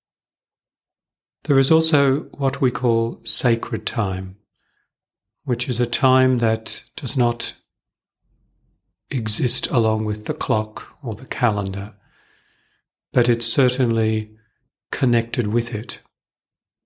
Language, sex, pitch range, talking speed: English, male, 105-120 Hz, 105 wpm